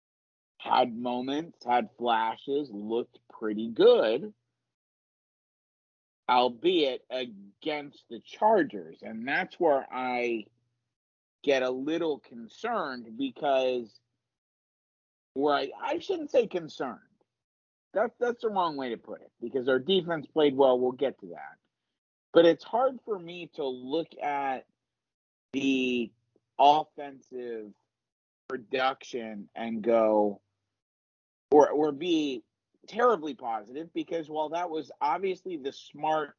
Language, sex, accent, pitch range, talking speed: English, male, American, 110-170 Hz, 110 wpm